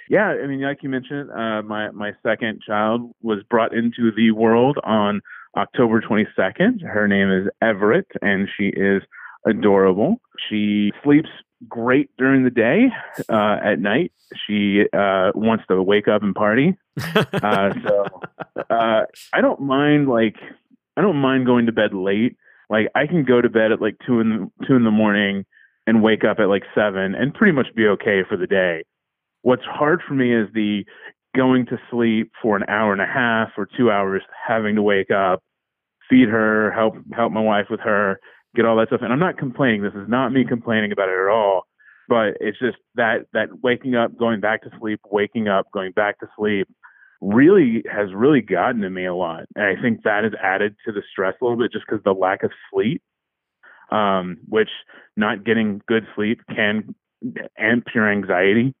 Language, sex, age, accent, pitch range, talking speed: English, male, 30-49, American, 105-125 Hz, 190 wpm